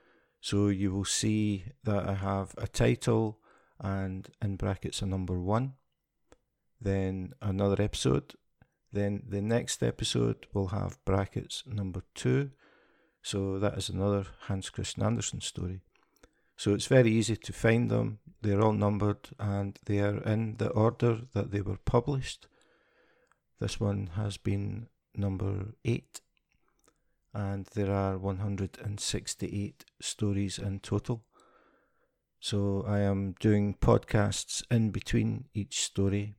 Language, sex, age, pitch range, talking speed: English, male, 50-69, 95-110 Hz, 125 wpm